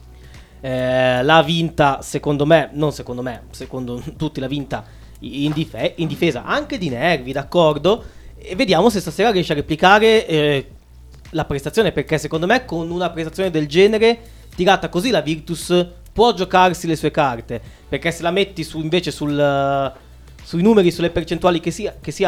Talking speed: 170 wpm